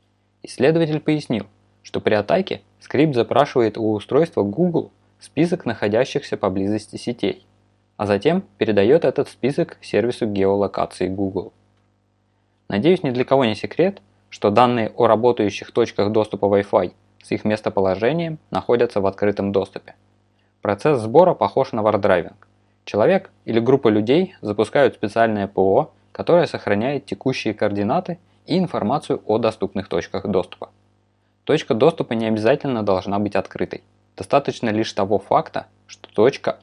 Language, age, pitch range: Russian, 20-39, 100-120 Hz